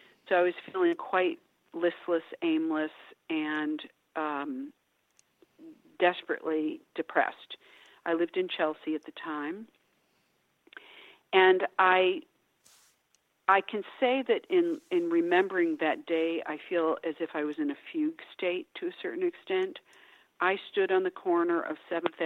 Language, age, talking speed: English, 50-69, 135 wpm